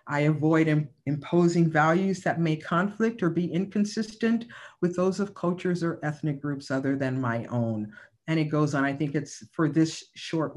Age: 50-69